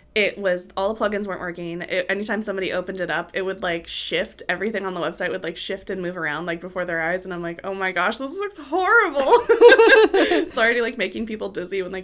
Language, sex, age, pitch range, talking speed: English, female, 20-39, 170-200 Hz, 230 wpm